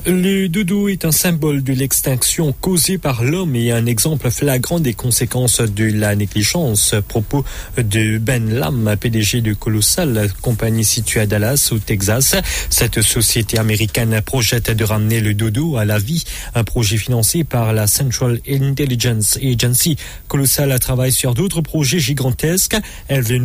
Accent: French